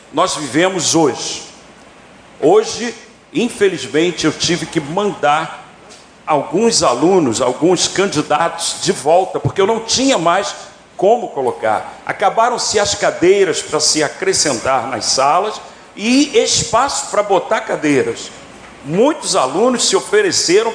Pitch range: 160-225 Hz